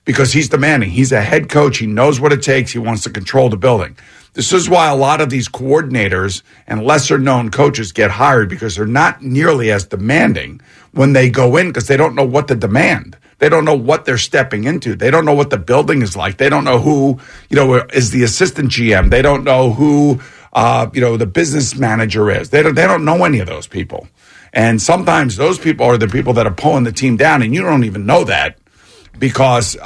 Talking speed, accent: 230 wpm, American